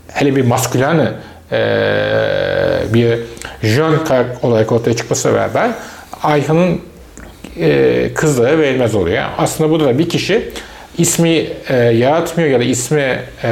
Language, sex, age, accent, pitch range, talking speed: Turkish, male, 40-59, native, 130-165 Hz, 110 wpm